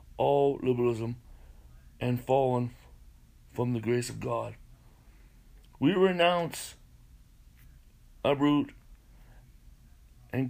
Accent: American